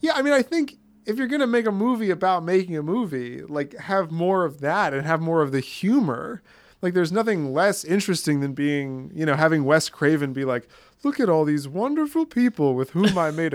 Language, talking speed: English, 225 wpm